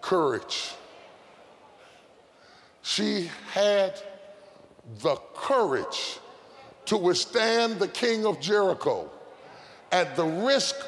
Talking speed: 75 wpm